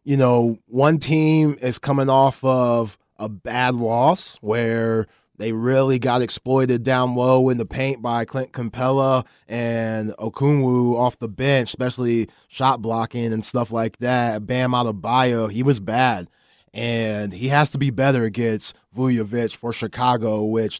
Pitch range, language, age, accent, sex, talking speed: 110-130 Hz, English, 20-39, American, male, 155 wpm